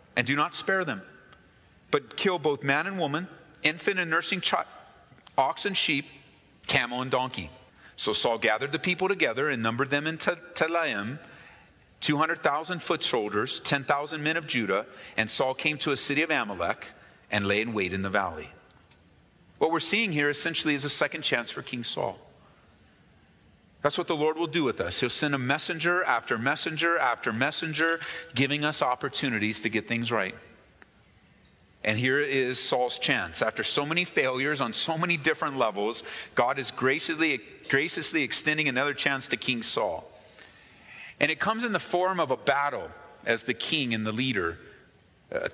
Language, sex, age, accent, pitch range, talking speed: English, male, 40-59, American, 120-165 Hz, 175 wpm